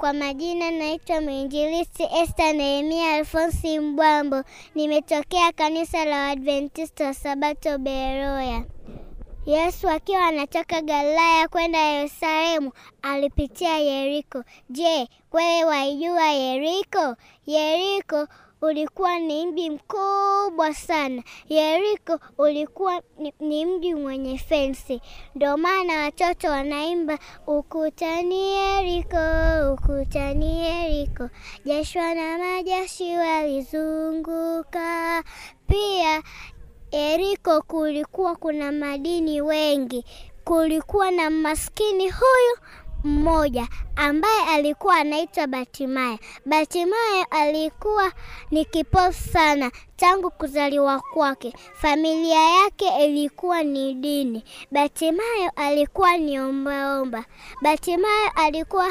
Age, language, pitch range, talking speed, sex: 20-39, Swahili, 290-345 Hz, 85 wpm, male